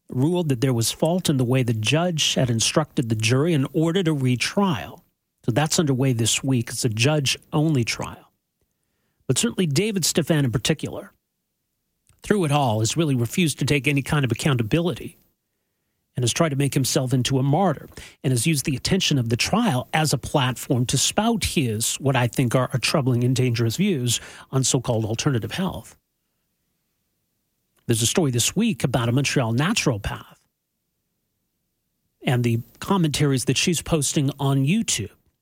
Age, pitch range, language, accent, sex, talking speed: 40-59, 125-165 Hz, English, American, male, 165 wpm